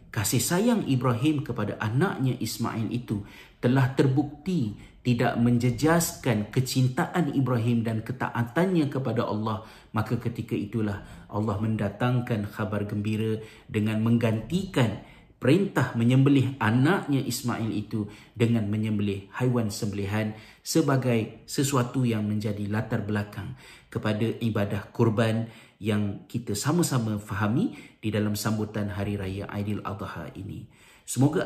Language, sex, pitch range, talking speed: Malay, male, 105-125 Hz, 110 wpm